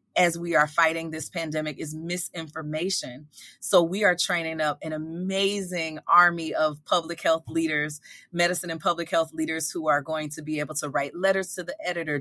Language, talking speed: English, 180 wpm